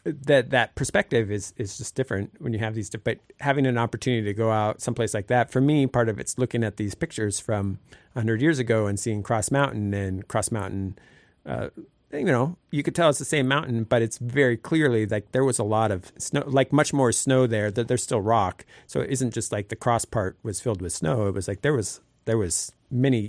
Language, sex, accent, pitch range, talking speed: English, male, American, 105-125 Hz, 235 wpm